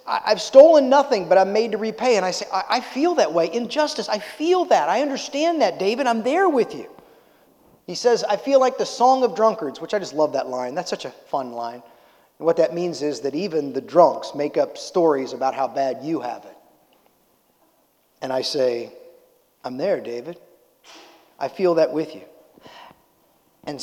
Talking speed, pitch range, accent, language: 195 wpm, 160-235 Hz, American, English